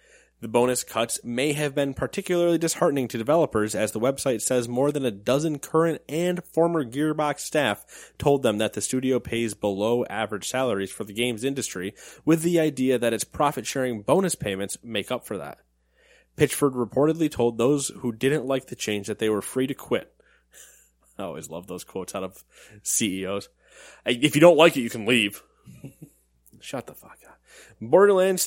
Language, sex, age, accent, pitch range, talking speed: English, male, 20-39, American, 110-145 Hz, 175 wpm